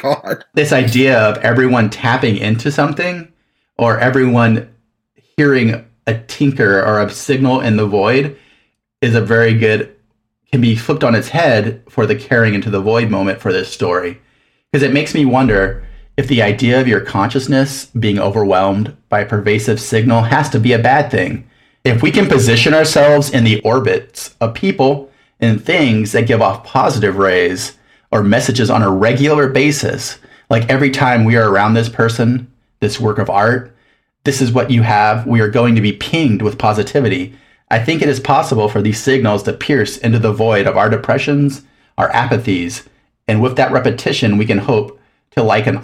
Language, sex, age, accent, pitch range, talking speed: English, male, 30-49, American, 105-135 Hz, 180 wpm